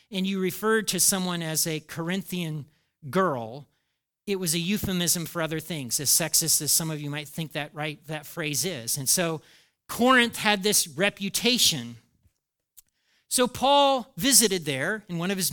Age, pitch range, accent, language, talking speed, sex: 40-59, 165-230 Hz, American, English, 160 wpm, male